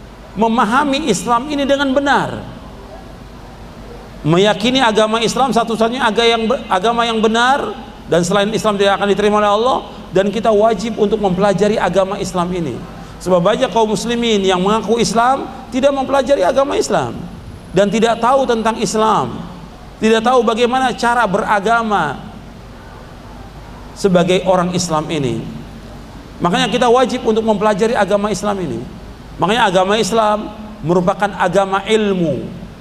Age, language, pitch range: 40-59, Malay, 185-235 Hz